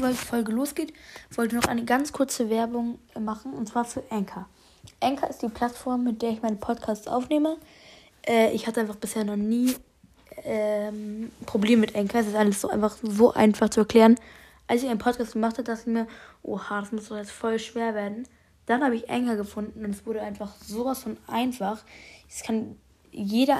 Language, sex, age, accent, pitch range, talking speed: German, female, 20-39, German, 215-250 Hz, 195 wpm